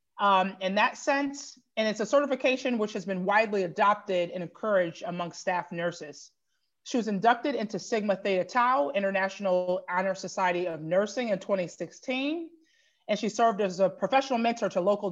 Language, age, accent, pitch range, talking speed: English, 30-49, American, 190-255 Hz, 165 wpm